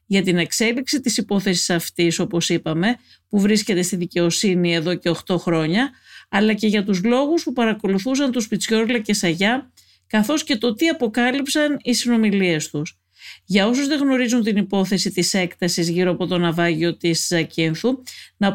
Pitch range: 175-230 Hz